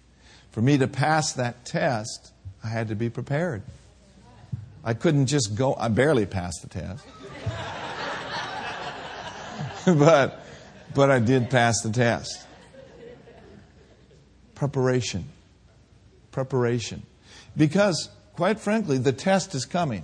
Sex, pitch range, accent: male, 115-175 Hz, American